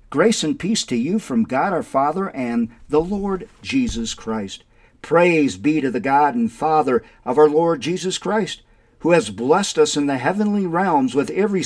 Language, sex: English, male